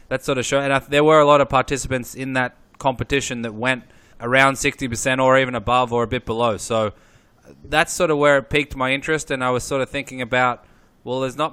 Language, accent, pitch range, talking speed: English, Australian, 120-135 Hz, 240 wpm